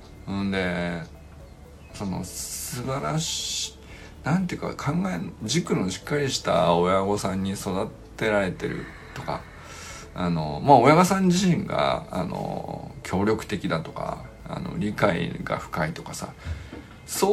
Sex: male